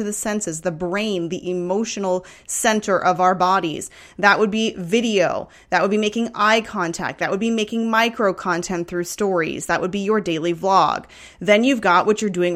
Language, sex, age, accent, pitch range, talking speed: English, female, 30-49, American, 180-225 Hz, 190 wpm